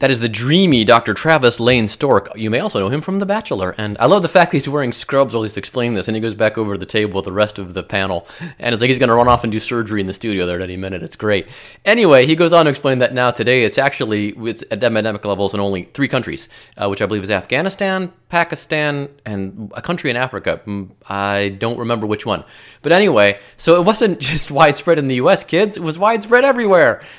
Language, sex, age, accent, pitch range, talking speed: English, male, 30-49, American, 110-150 Hz, 250 wpm